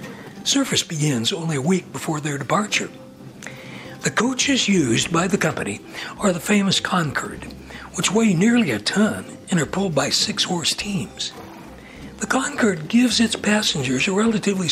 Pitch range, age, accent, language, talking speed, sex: 135-215 Hz, 60-79, American, English, 145 wpm, male